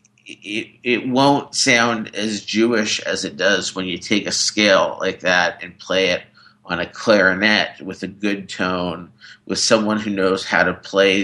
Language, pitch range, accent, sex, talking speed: English, 95-115 Hz, American, male, 175 wpm